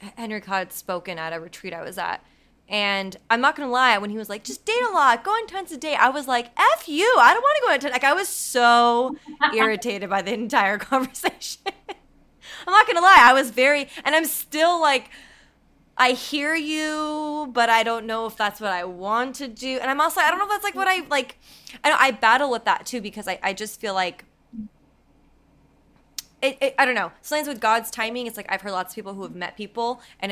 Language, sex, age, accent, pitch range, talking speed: English, female, 20-39, American, 190-265 Hz, 235 wpm